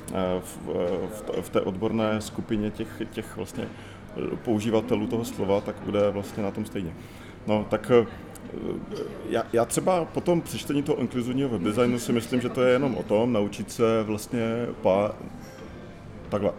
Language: Czech